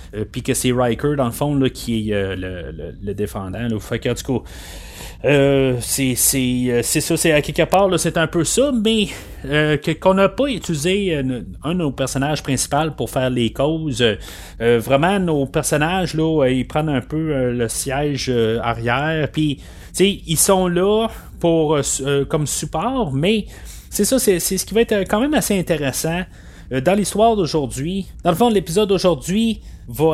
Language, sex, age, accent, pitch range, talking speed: French, male, 30-49, Canadian, 120-160 Hz, 190 wpm